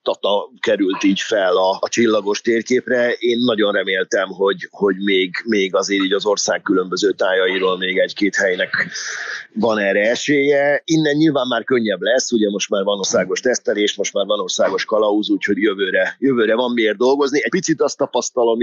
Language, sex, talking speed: Hungarian, male, 170 wpm